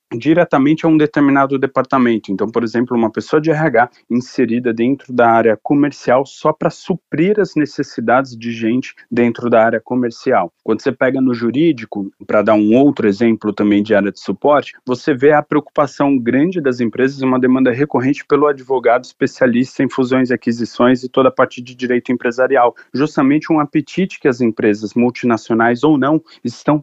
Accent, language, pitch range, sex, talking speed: Brazilian, Portuguese, 115-145 Hz, male, 170 wpm